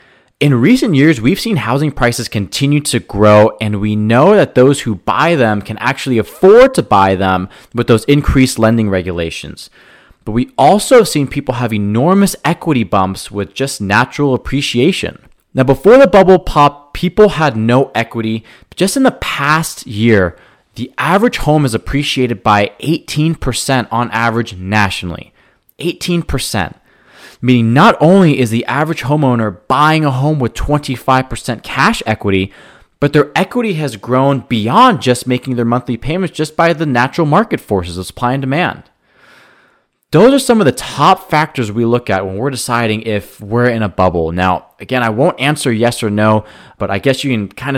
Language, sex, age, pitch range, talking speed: English, male, 30-49, 110-150 Hz, 170 wpm